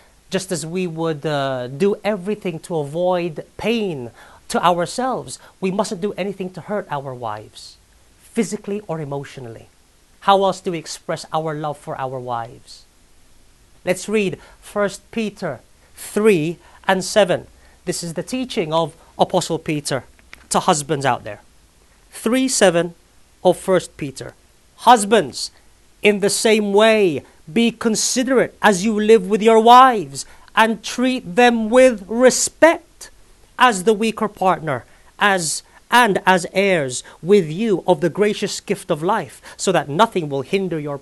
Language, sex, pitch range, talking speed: English, male, 155-210 Hz, 140 wpm